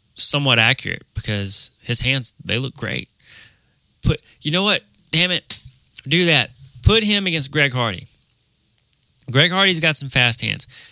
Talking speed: 150 wpm